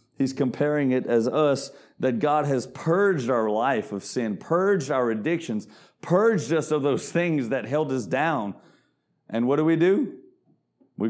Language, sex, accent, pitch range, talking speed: English, male, American, 115-160 Hz, 170 wpm